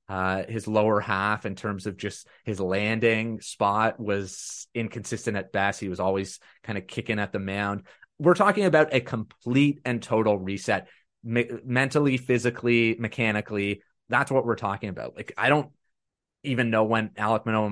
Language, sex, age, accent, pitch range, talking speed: English, male, 30-49, American, 100-120 Hz, 165 wpm